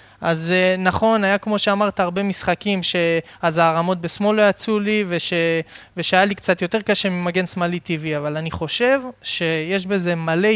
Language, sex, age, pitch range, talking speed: Hebrew, male, 20-39, 165-200 Hz, 170 wpm